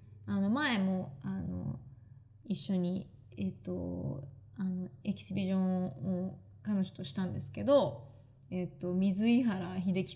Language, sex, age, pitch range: Japanese, female, 20-39, 170-200 Hz